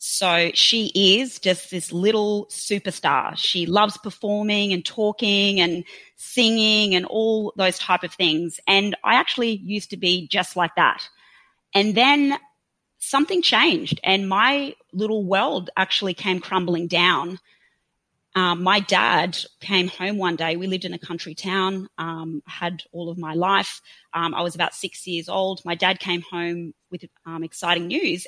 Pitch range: 175-205 Hz